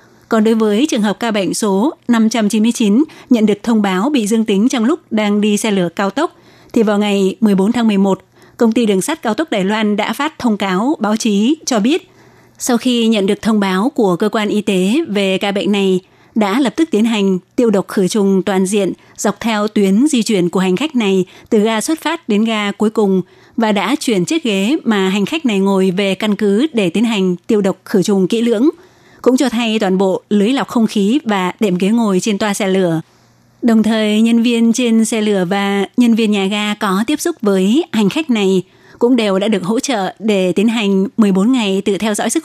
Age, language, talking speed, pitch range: 20-39, Vietnamese, 230 wpm, 195-235 Hz